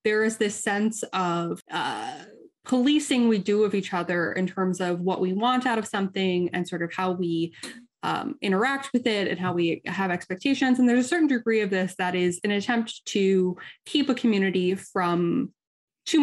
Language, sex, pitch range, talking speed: English, female, 190-240 Hz, 190 wpm